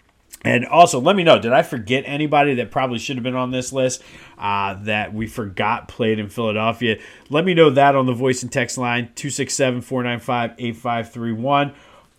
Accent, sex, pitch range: American, male, 115-150 Hz